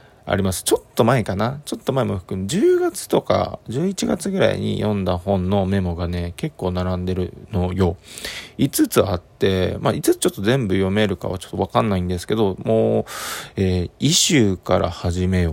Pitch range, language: 90-125 Hz, Japanese